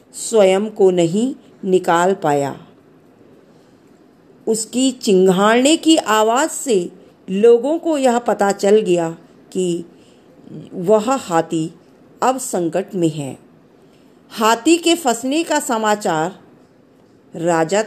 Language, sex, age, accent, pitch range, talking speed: Hindi, female, 50-69, native, 185-250 Hz, 95 wpm